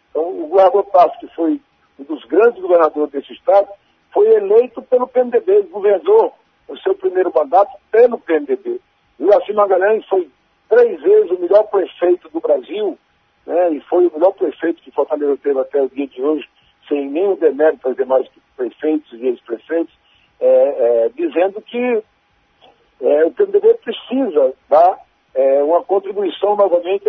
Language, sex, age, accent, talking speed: English, male, 60-79, Brazilian, 155 wpm